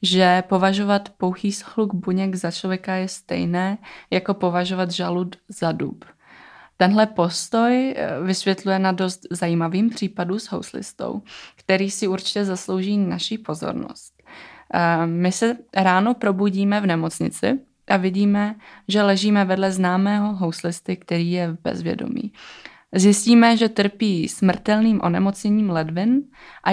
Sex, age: female, 20-39